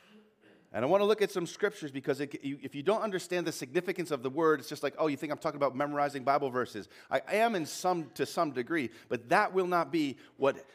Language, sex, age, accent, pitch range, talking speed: English, male, 40-59, American, 135-175 Hz, 240 wpm